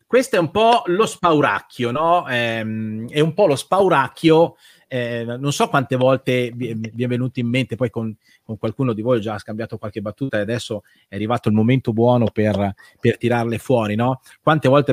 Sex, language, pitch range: male, Italian, 110-140 Hz